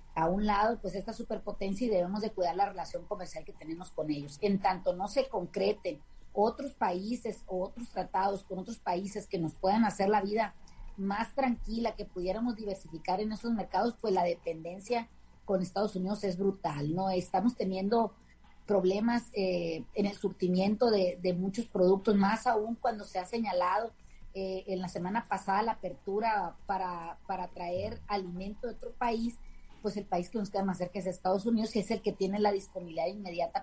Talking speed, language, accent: 180 wpm, Spanish, Mexican